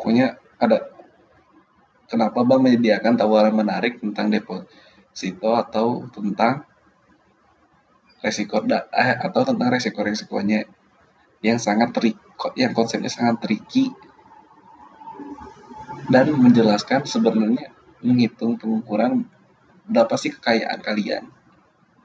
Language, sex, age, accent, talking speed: Indonesian, male, 20-39, native, 95 wpm